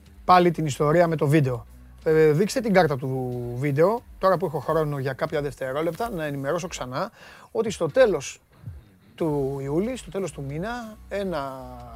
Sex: male